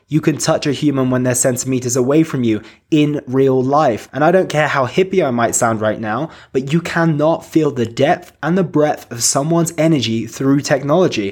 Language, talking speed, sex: English, 205 wpm, male